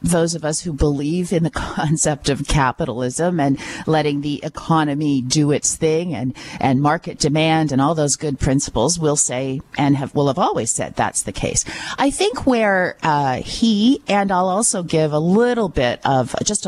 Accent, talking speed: American, 185 wpm